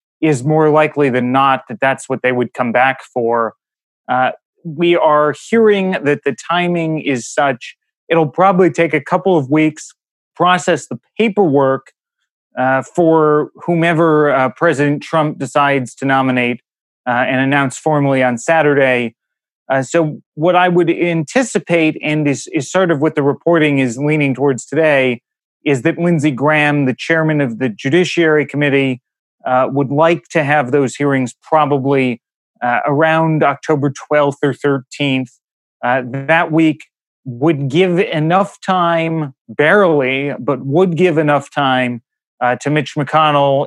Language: English